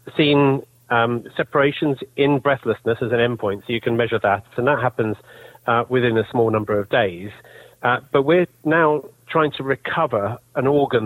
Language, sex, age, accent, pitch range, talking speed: English, male, 40-59, British, 110-135 Hz, 180 wpm